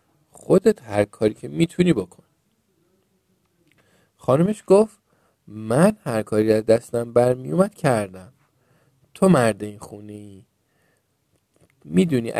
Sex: male